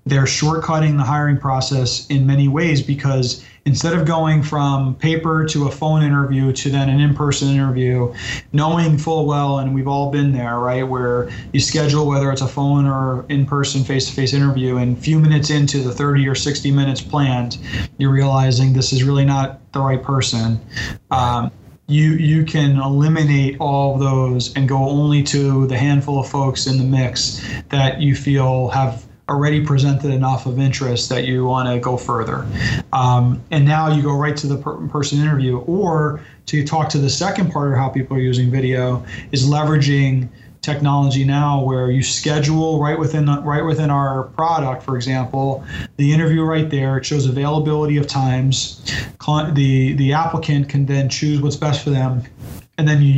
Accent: American